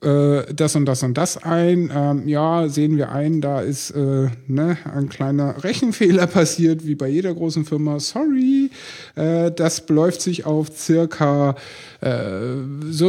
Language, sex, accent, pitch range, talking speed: German, male, German, 140-175 Hz, 130 wpm